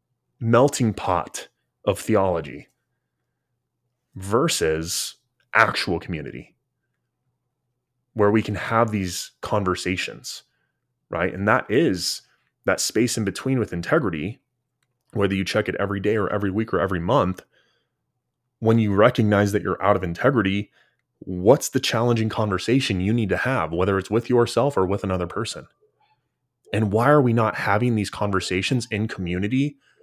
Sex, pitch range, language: male, 105-130 Hz, English